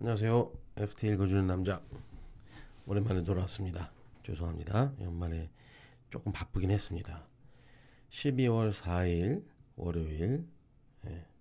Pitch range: 90-110 Hz